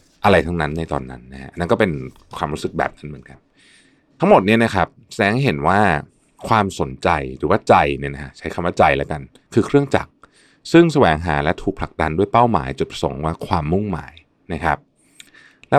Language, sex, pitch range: Thai, male, 75-105 Hz